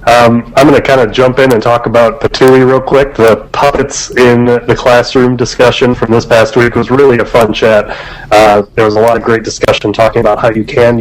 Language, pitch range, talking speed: English, 105-120 Hz, 230 wpm